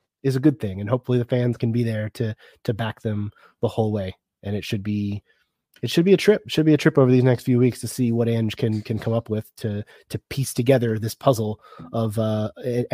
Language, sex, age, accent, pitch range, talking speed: English, male, 30-49, American, 110-135 Hz, 245 wpm